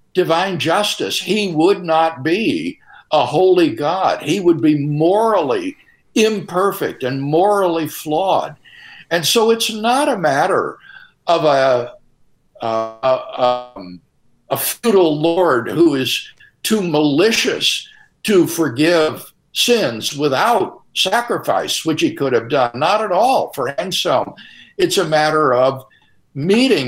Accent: American